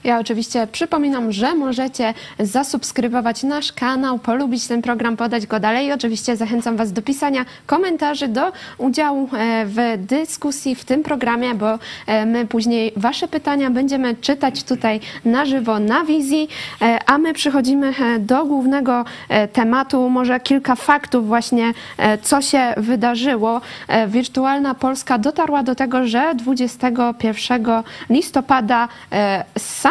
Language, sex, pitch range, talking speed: Polish, female, 230-280 Hz, 125 wpm